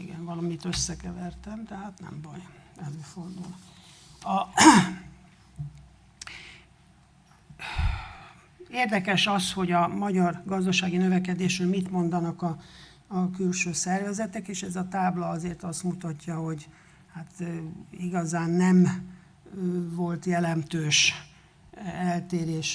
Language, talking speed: Hungarian, 90 wpm